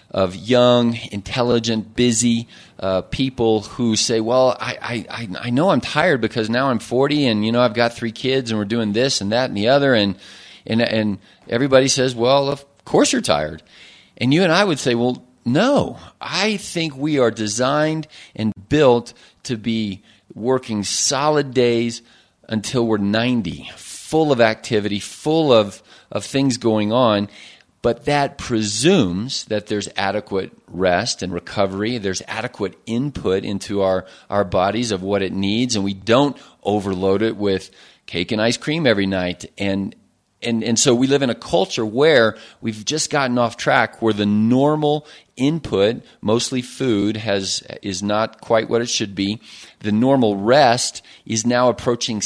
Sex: male